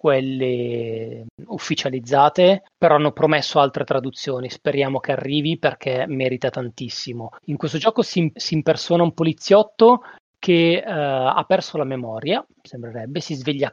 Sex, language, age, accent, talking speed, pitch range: male, Italian, 30-49, native, 125 wpm, 135-180 Hz